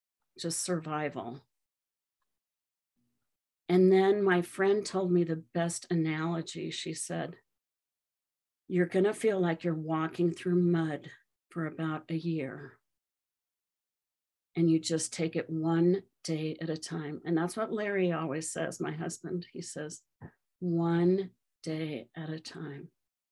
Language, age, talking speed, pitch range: English, 50-69, 130 wpm, 160-185 Hz